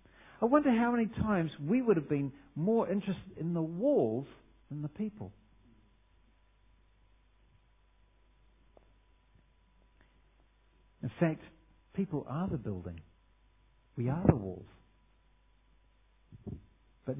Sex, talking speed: male, 100 wpm